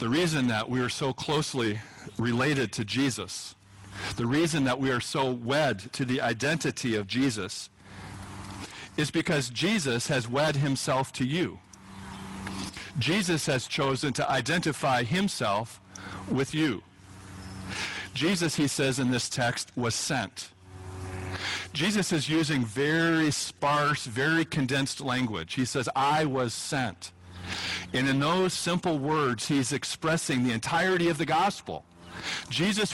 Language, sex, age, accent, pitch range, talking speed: English, male, 50-69, American, 115-170 Hz, 130 wpm